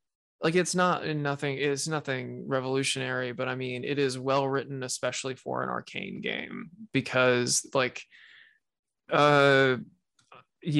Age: 20-39